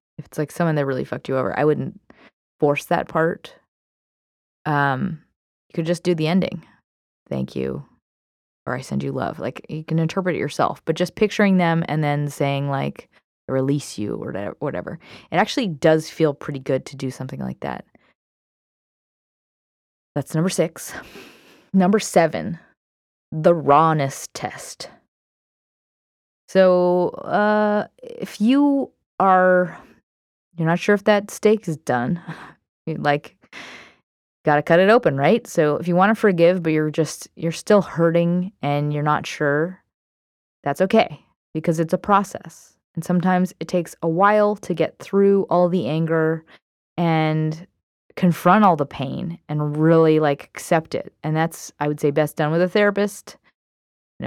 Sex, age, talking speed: female, 20-39, 155 wpm